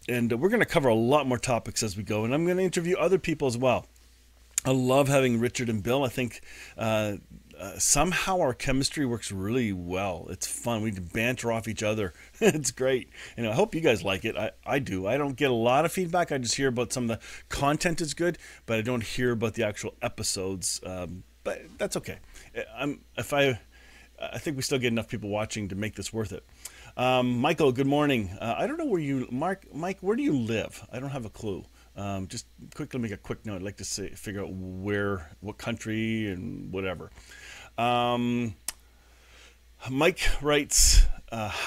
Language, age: English, 40-59